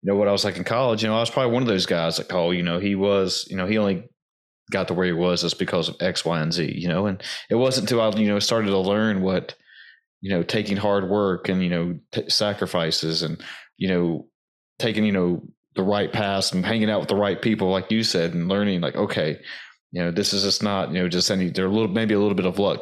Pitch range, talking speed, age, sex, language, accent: 95-115 Hz, 275 wpm, 30-49, male, English, American